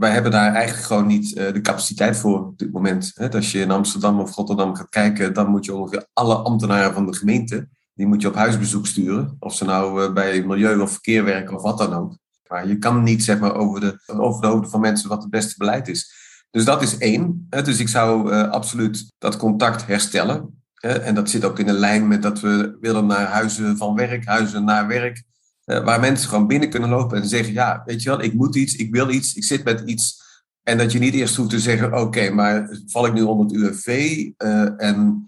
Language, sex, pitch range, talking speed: Dutch, male, 105-115 Hz, 230 wpm